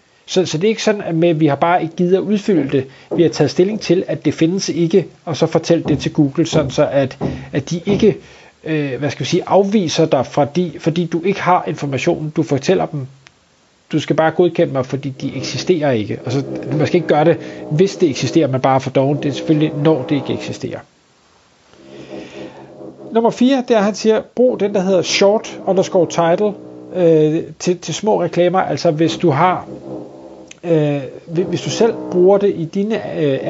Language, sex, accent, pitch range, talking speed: Danish, male, native, 140-180 Hz, 200 wpm